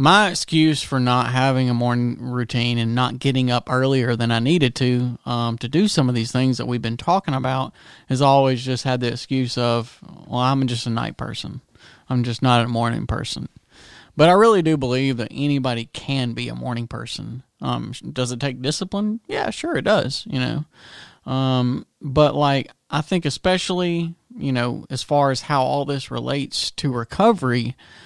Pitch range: 125-150 Hz